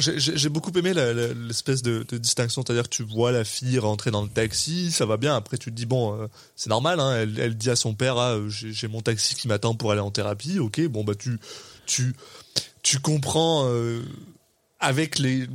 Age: 20-39